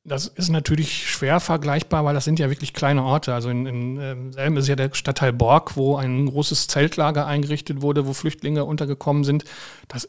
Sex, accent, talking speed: male, German, 190 wpm